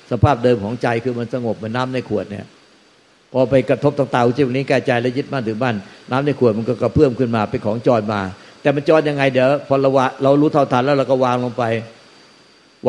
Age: 60-79